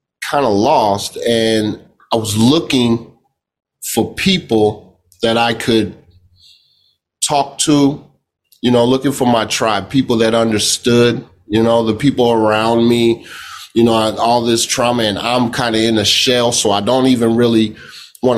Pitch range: 115-135 Hz